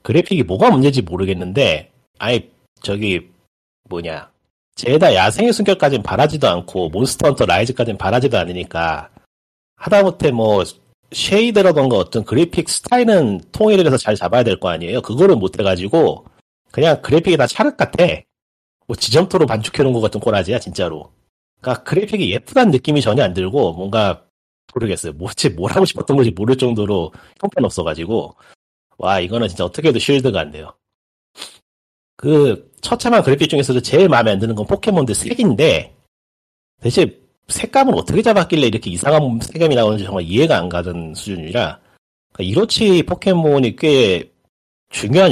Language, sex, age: Korean, male, 40-59